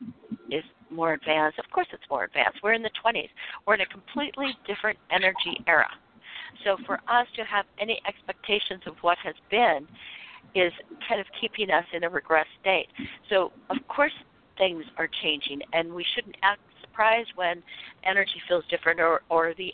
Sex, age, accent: female, 60-79, American